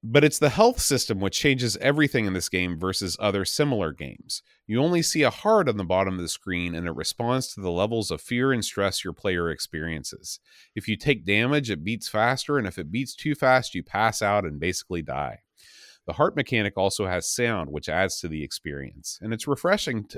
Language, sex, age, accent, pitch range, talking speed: English, male, 30-49, American, 90-130 Hz, 215 wpm